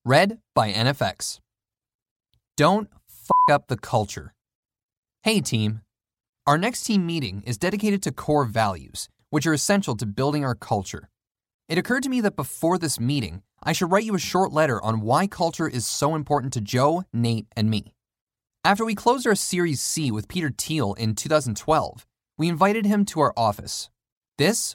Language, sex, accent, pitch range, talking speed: English, male, American, 115-175 Hz, 170 wpm